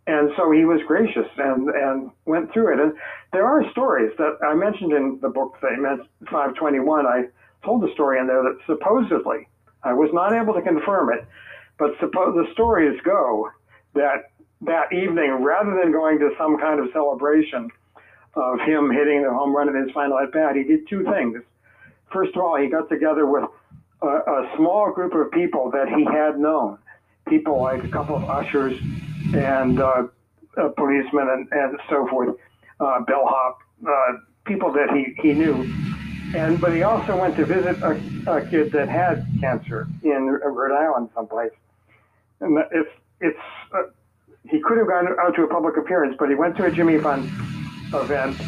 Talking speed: 175 wpm